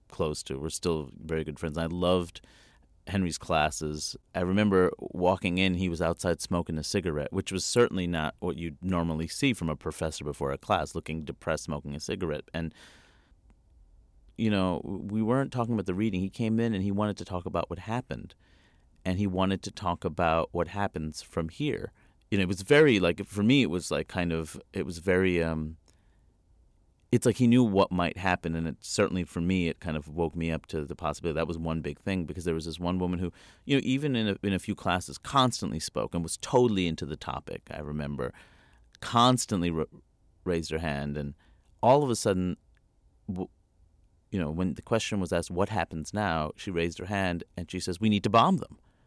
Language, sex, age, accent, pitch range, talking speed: English, male, 30-49, American, 80-100 Hz, 210 wpm